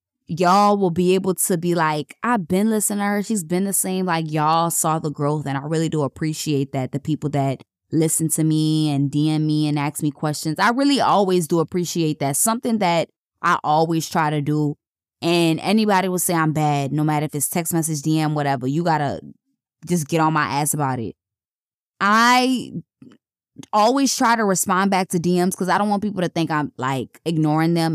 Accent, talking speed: American, 205 wpm